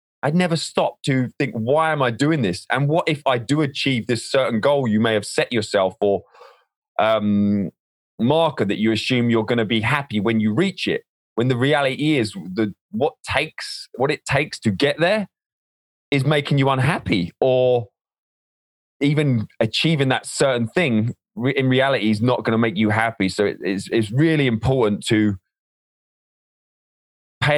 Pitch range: 110-145 Hz